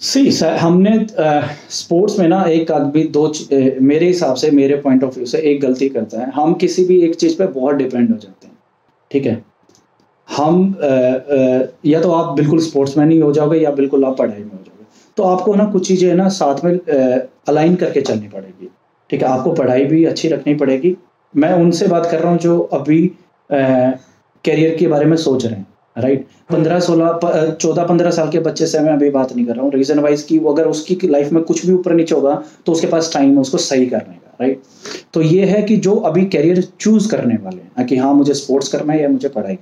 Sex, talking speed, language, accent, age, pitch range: male, 225 wpm, Hindi, native, 30-49, 140-175 Hz